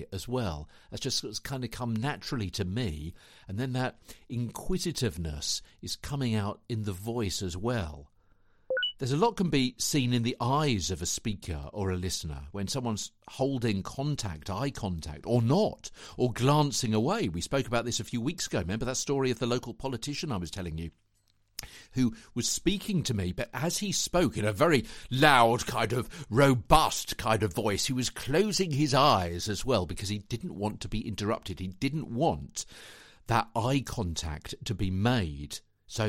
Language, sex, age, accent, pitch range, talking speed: English, male, 50-69, British, 95-130 Hz, 185 wpm